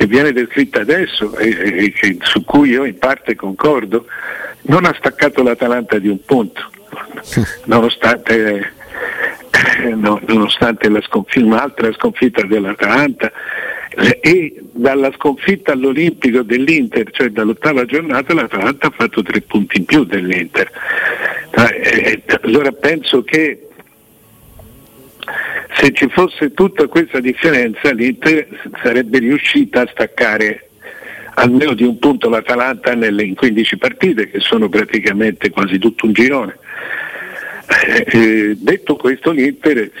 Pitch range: 110-150 Hz